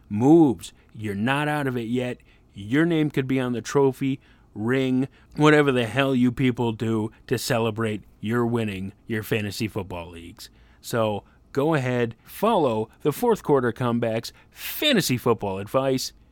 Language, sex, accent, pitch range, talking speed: English, male, American, 115-165 Hz, 145 wpm